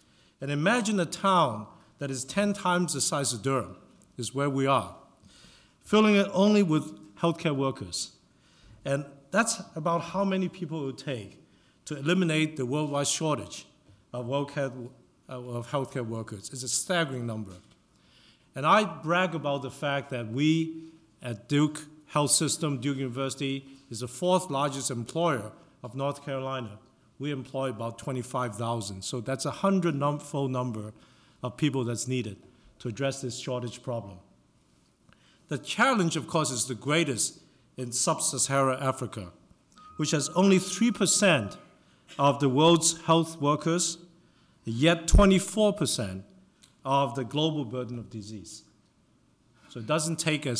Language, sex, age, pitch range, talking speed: English, male, 50-69, 125-160 Hz, 140 wpm